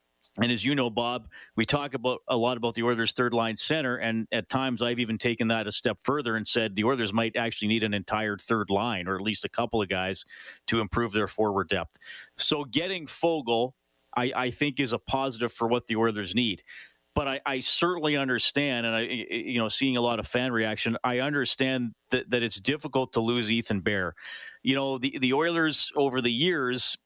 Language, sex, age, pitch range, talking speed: English, male, 40-59, 115-135 Hz, 215 wpm